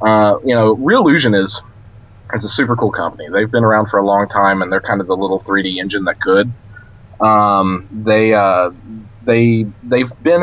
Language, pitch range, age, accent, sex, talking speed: English, 100-115 Hz, 30-49, American, male, 190 wpm